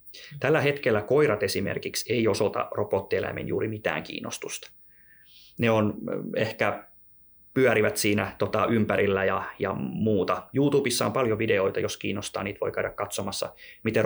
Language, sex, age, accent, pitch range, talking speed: Finnish, male, 20-39, native, 100-145 Hz, 125 wpm